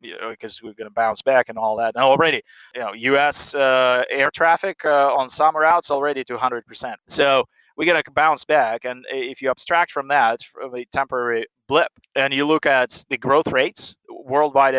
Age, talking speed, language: 30-49, 205 wpm, English